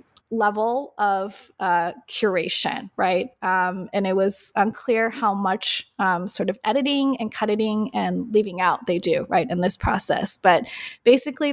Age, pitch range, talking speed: 20-39, 195-240 Hz, 150 wpm